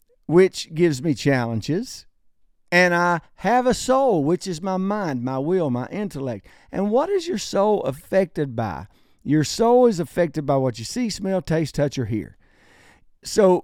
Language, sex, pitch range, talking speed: English, male, 135-185 Hz, 165 wpm